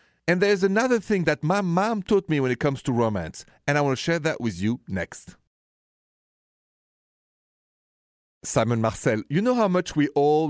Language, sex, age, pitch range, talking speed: English, male, 40-59, 110-165 Hz, 175 wpm